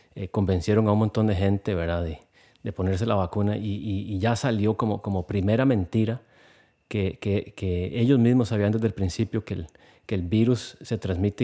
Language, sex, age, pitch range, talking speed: Spanish, male, 30-49, 100-115 Hz, 200 wpm